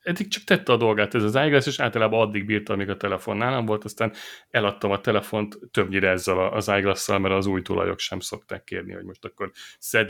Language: Hungarian